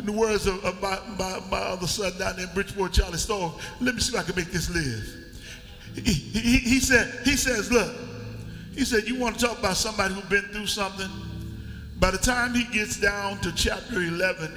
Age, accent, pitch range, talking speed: 50-69, American, 170-205 Hz, 210 wpm